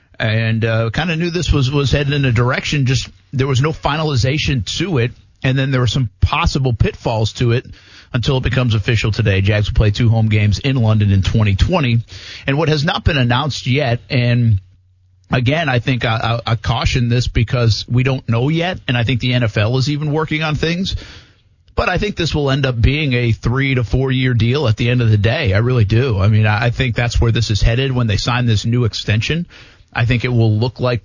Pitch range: 110-135 Hz